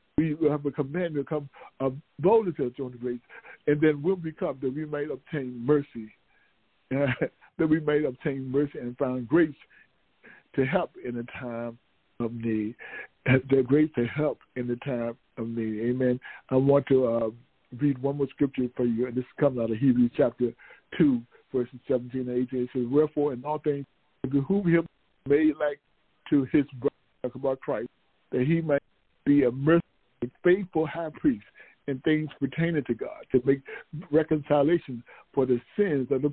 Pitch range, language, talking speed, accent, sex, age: 125-155 Hz, English, 175 wpm, American, male, 60-79